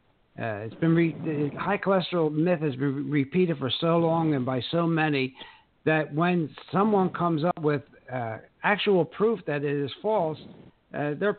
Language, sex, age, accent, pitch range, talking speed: English, male, 60-79, American, 135-170 Hz, 180 wpm